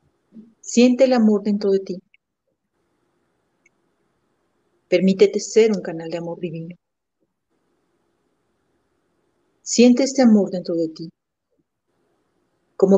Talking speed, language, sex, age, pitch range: 90 wpm, Spanish, female, 50-69, 170-205 Hz